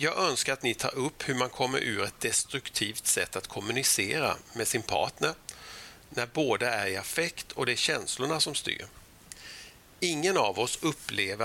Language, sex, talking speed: Swedish, male, 175 wpm